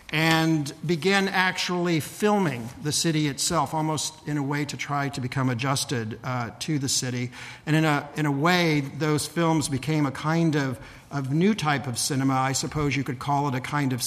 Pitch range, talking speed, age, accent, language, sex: 130-155 Hz, 195 wpm, 50-69, American, English, male